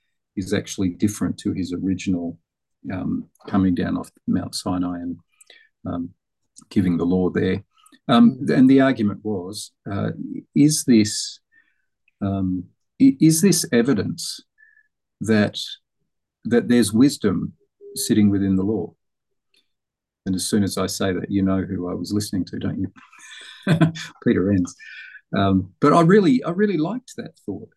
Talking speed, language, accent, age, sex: 135 wpm, English, Australian, 50-69, male